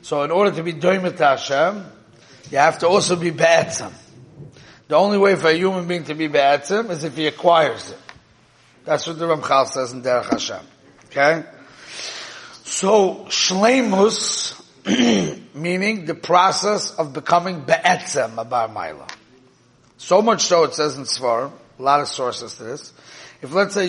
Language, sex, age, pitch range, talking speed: English, male, 30-49, 140-185 Hz, 155 wpm